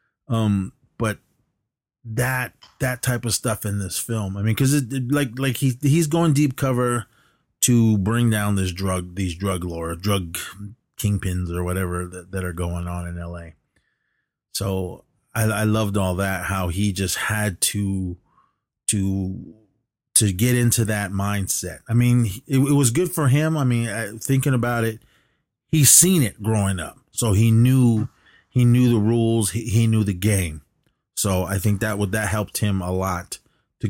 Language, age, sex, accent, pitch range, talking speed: English, 30-49, male, American, 95-120 Hz, 175 wpm